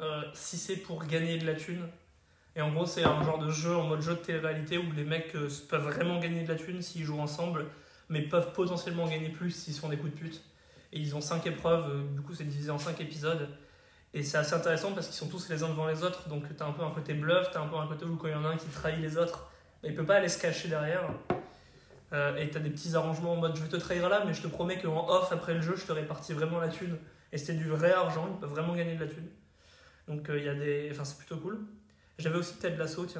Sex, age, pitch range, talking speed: male, 20-39, 150-170 Hz, 280 wpm